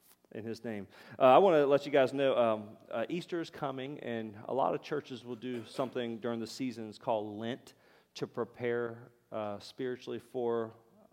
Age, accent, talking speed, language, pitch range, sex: 40-59, American, 185 wpm, English, 115-135 Hz, male